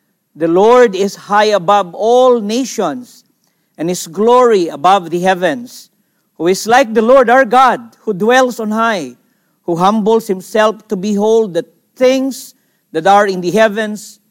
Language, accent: English, Filipino